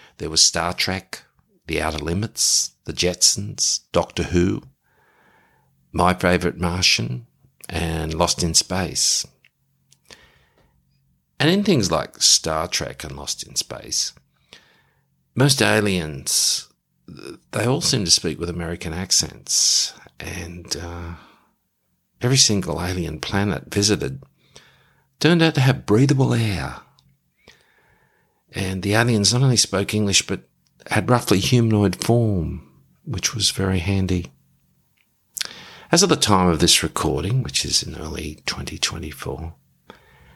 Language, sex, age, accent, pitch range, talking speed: English, male, 50-69, Australian, 80-105 Hz, 115 wpm